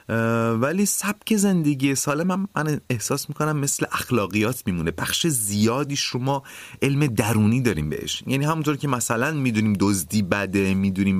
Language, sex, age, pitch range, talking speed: Persian, male, 30-49, 95-135 Hz, 140 wpm